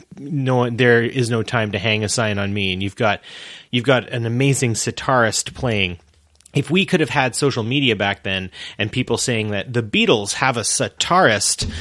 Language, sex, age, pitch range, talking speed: English, male, 30-49, 105-130 Hz, 195 wpm